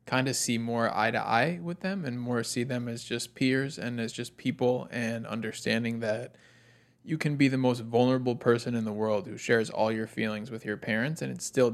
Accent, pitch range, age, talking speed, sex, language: American, 110-125 Hz, 20-39, 225 wpm, male, English